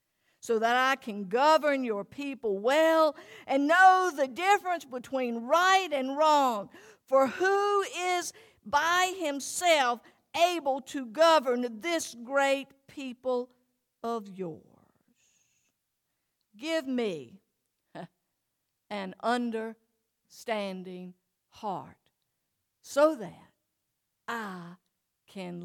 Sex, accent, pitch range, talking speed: female, American, 200-265 Hz, 90 wpm